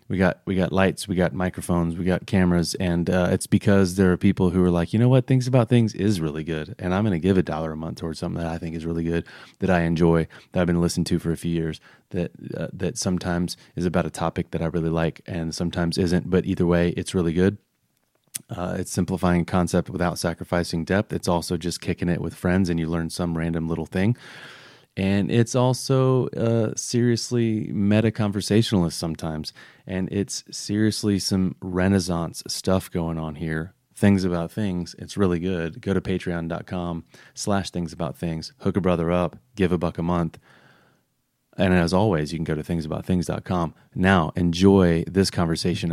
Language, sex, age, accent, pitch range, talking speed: English, male, 30-49, American, 85-95 Hz, 195 wpm